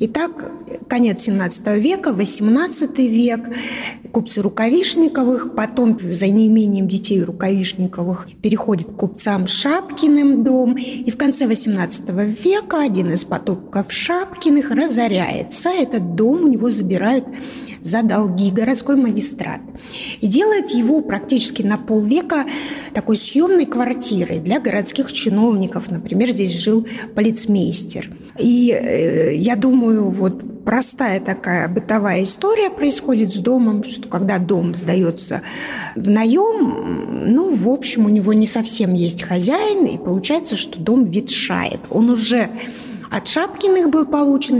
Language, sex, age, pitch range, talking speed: Russian, female, 20-39, 205-270 Hz, 120 wpm